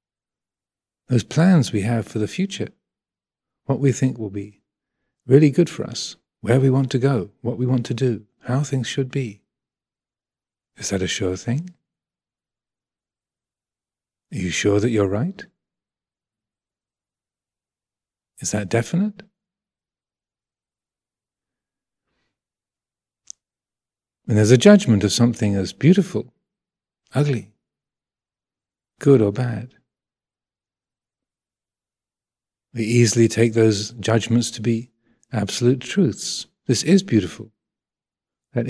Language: English